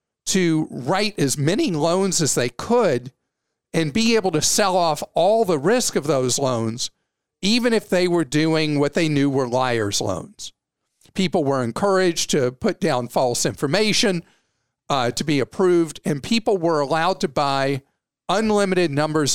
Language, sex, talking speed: English, male, 160 wpm